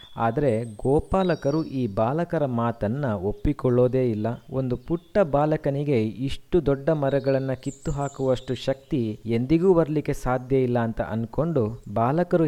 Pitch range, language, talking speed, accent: 115-145 Hz, Kannada, 110 wpm, native